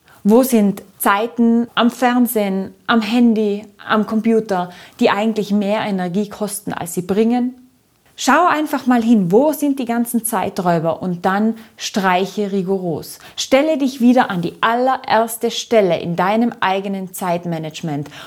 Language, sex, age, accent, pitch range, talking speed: German, female, 30-49, German, 185-235 Hz, 135 wpm